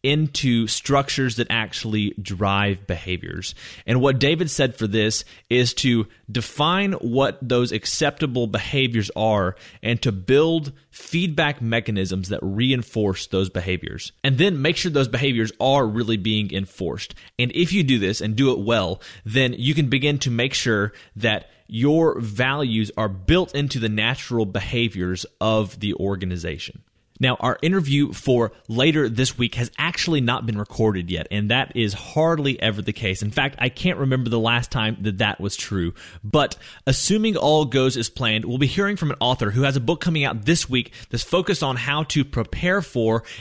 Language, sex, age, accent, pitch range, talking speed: English, male, 30-49, American, 110-140 Hz, 175 wpm